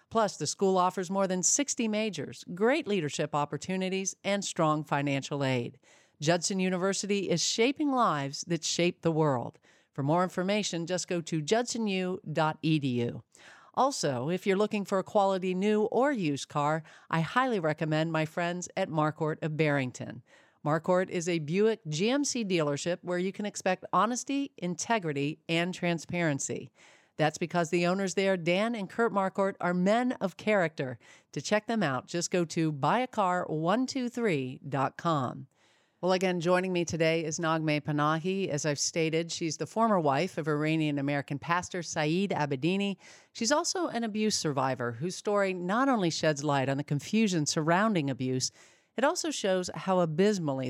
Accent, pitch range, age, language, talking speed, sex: American, 155-200 Hz, 50-69, English, 150 wpm, female